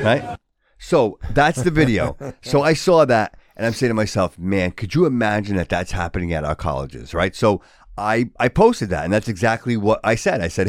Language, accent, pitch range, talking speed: English, American, 95-140 Hz, 215 wpm